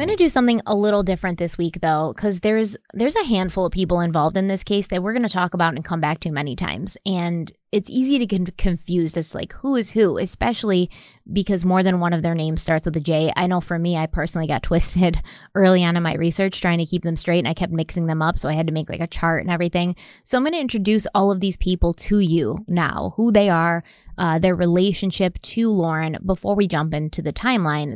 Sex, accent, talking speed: female, American, 250 wpm